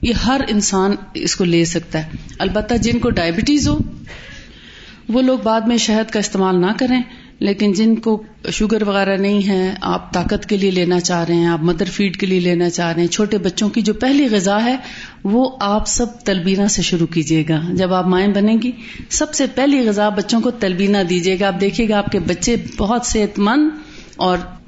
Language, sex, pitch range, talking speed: Urdu, female, 180-230 Hz, 205 wpm